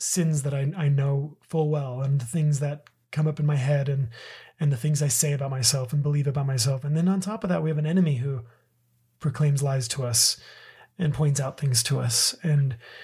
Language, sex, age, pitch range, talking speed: English, male, 30-49, 125-165 Hz, 230 wpm